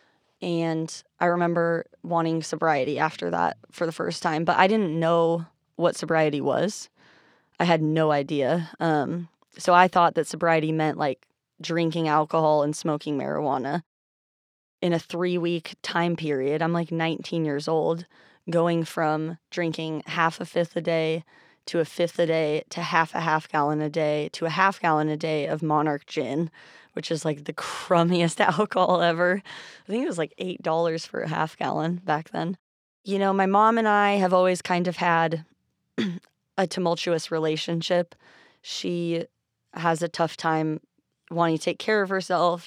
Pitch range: 155-175 Hz